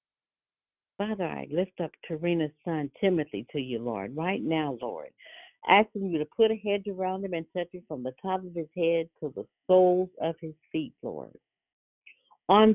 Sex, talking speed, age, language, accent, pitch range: female, 180 wpm, 50-69, English, American, 145-190 Hz